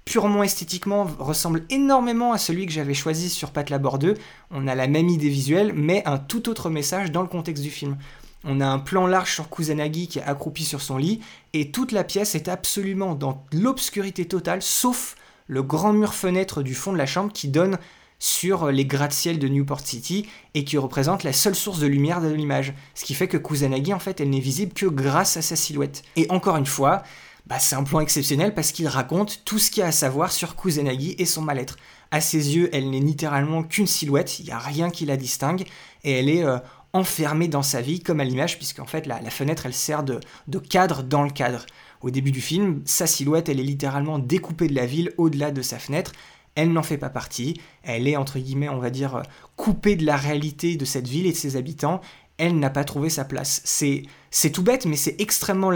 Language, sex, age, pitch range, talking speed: French, male, 20-39, 140-185 Hz, 225 wpm